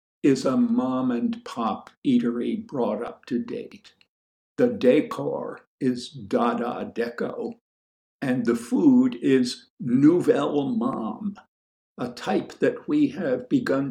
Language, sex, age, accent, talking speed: English, male, 60-79, American, 110 wpm